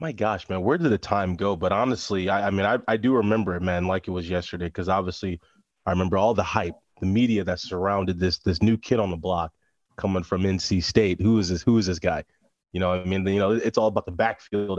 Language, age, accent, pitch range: English, 20-39, American, 90-110 Hz